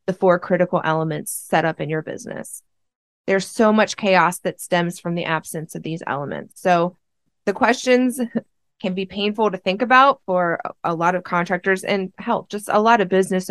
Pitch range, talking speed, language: 170-195 Hz, 185 wpm, English